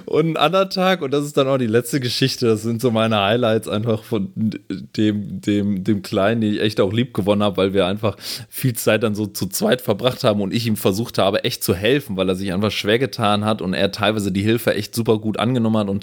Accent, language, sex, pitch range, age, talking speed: German, German, male, 100-120 Hz, 20-39, 250 wpm